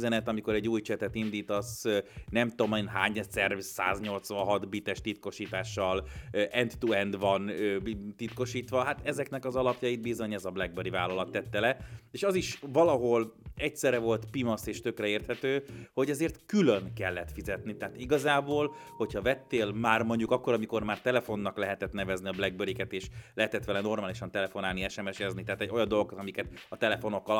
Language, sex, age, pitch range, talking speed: Hungarian, male, 30-49, 100-125 Hz, 155 wpm